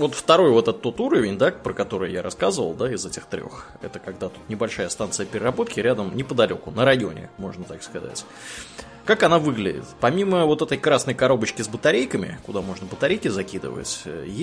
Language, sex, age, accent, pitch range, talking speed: Russian, male, 20-39, native, 95-125 Hz, 175 wpm